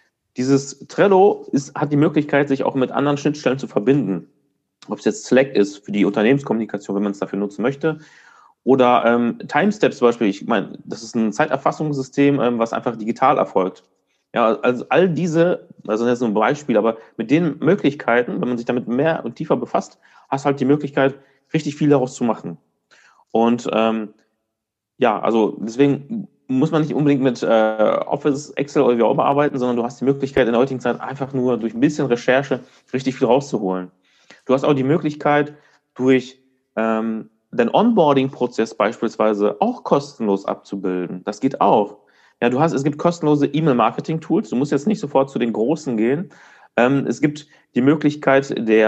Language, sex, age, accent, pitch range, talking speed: German, male, 30-49, German, 110-145 Hz, 180 wpm